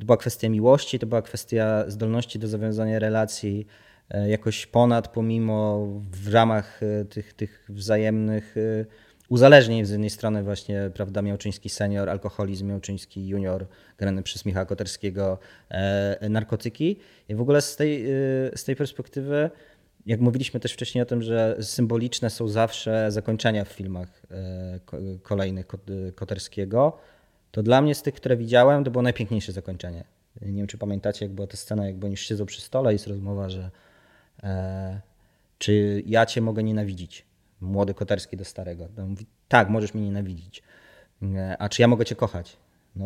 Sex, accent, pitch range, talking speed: male, native, 100-120 Hz, 150 wpm